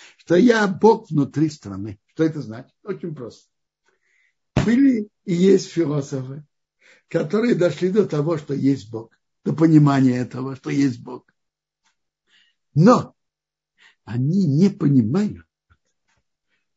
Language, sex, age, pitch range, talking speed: Russian, male, 60-79, 140-195 Hz, 110 wpm